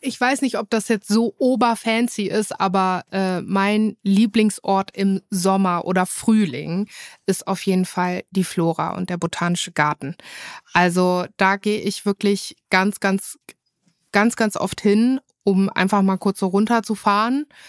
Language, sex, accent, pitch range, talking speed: German, female, German, 180-220 Hz, 150 wpm